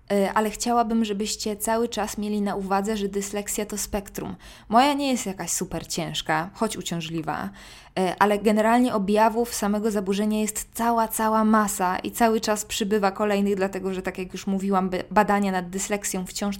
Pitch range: 195-220 Hz